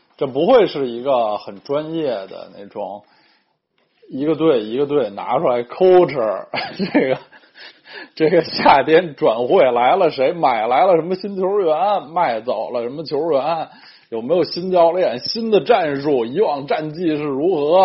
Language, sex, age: Chinese, male, 20-39